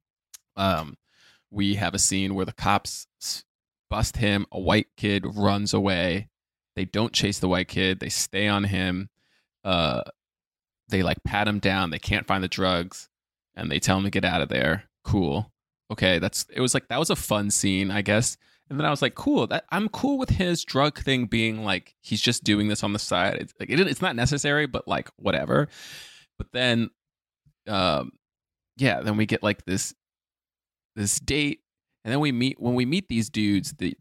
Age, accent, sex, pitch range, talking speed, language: 20-39, American, male, 95-110 Hz, 195 wpm, English